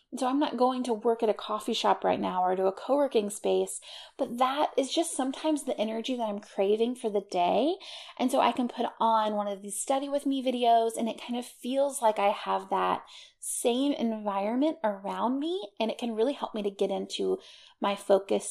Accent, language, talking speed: American, English, 220 wpm